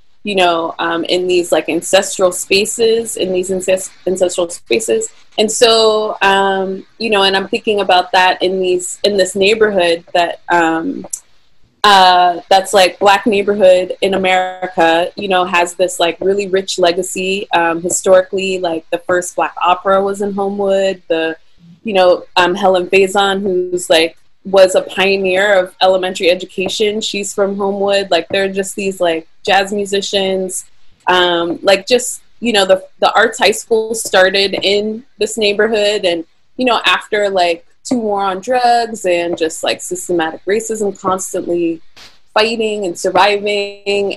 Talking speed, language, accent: 150 wpm, English, American